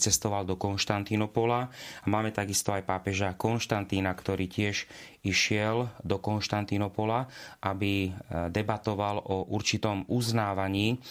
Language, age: Slovak, 30-49